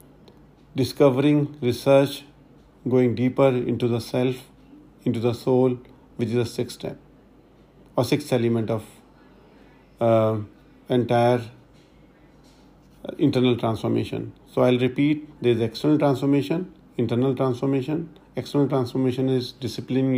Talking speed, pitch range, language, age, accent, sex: 105 wpm, 120-135 Hz, English, 50-69, Indian, male